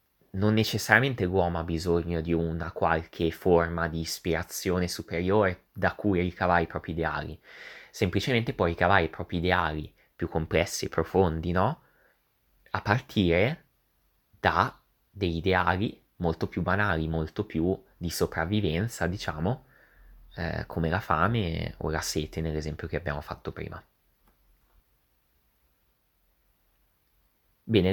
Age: 20-39